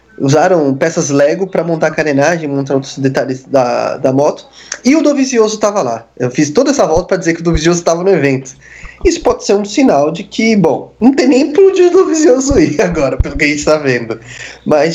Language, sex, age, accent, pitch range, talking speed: Portuguese, male, 20-39, Brazilian, 130-170 Hz, 220 wpm